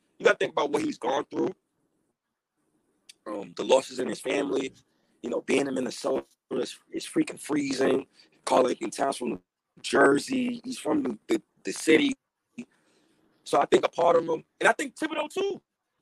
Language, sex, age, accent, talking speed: English, male, 30-49, American, 180 wpm